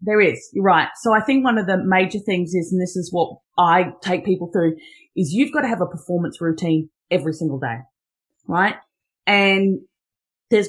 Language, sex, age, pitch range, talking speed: English, female, 30-49, 180-240 Hz, 195 wpm